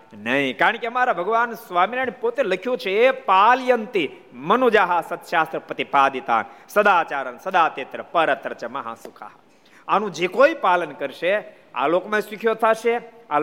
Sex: male